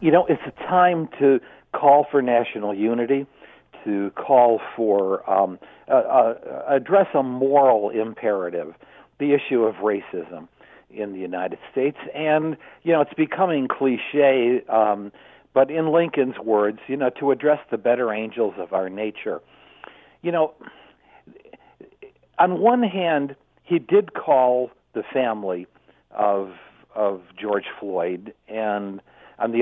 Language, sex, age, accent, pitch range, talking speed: English, male, 60-79, American, 105-150 Hz, 135 wpm